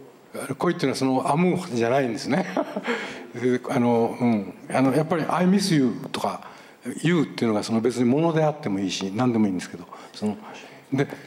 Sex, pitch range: male, 135-190 Hz